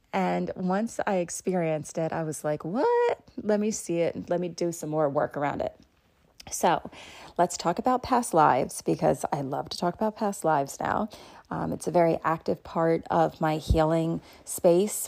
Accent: American